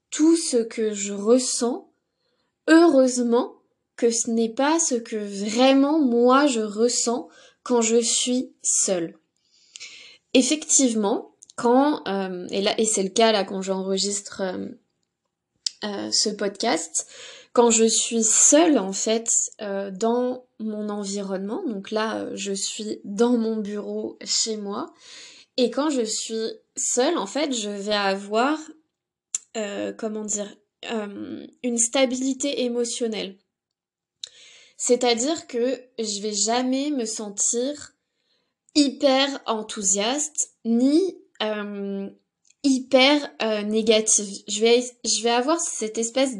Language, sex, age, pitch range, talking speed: French, female, 20-39, 210-265 Hz, 120 wpm